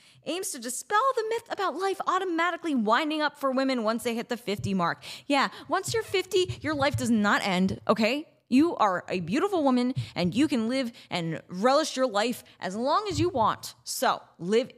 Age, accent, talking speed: 10-29, American, 195 wpm